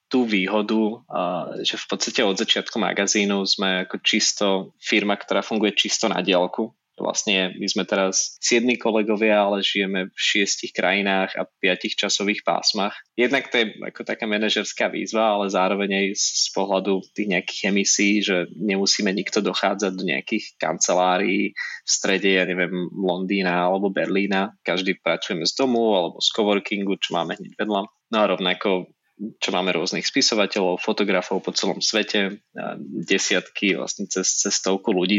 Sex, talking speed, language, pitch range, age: male, 150 wpm, Slovak, 95-105 Hz, 20-39